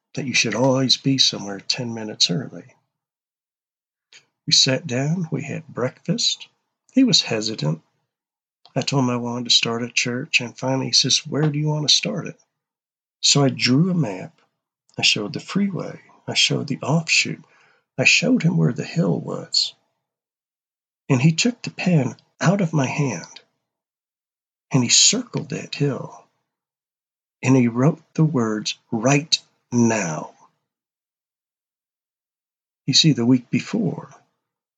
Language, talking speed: English, 145 wpm